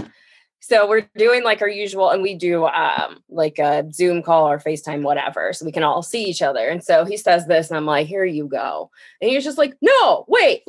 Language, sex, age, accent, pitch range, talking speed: English, female, 20-39, American, 165-225 Hz, 235 wpm